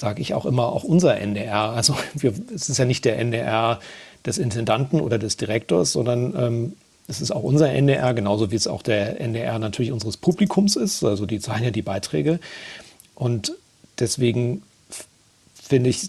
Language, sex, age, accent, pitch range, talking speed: German, male, 40-59, German, 115-135 Hz, 175 wpm